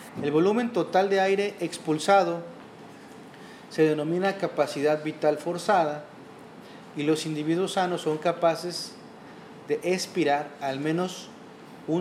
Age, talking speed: 40-59, 110 wpm